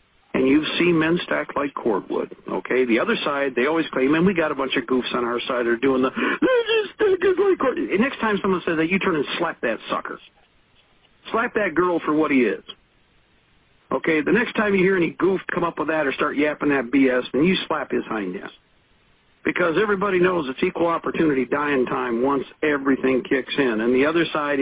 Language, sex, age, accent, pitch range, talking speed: English, male, 60-79, American, 145-200 Hz, 225 wpm